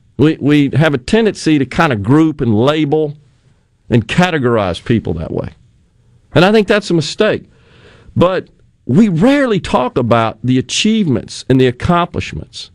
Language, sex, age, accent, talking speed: English, male, 40-59, American, 150 wpm